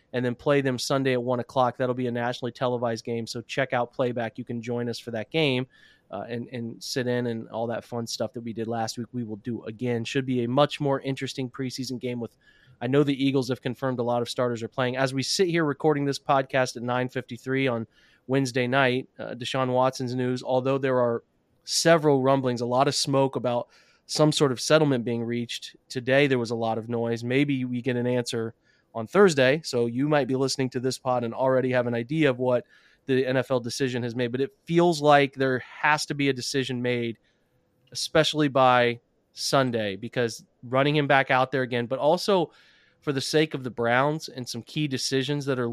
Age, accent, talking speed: 20-39, American, 220 wpm